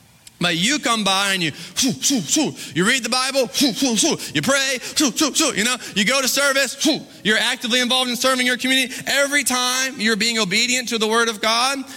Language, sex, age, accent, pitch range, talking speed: English, male, 20-39, American, 220-255 Hz, 225 wpm